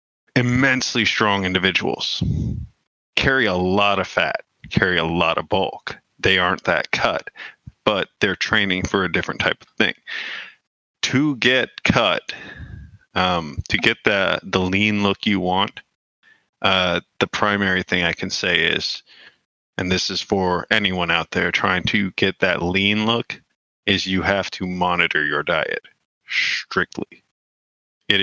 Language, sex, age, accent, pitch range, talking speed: English, male, 30-49, American, 90-105 Hz, 145 wpm